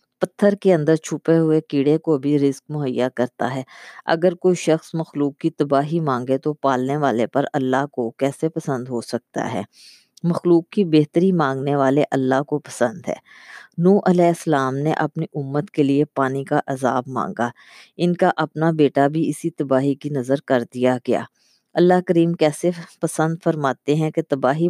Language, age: Urdu, 20-39